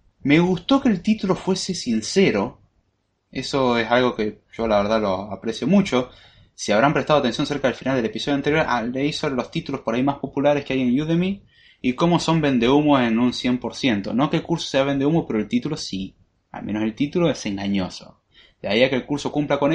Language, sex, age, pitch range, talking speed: Spanish, male, 20-39, 100-140 Hz, 215 wpm